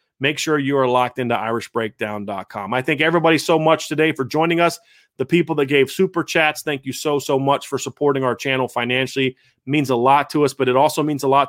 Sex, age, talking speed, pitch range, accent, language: male, 30-49, 230 wpm, 130-155 Hz, American, English